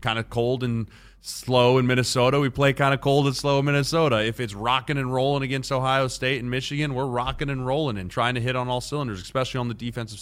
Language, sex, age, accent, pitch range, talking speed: English, male, 20-39, American, 95-125 Hz, 240 wpm